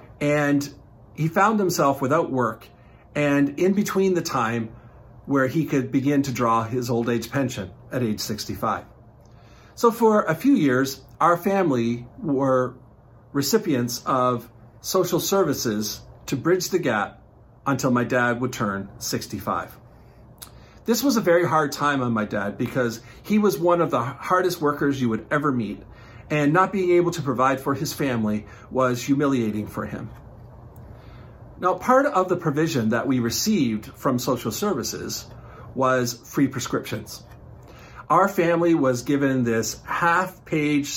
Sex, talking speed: male, 150 wpm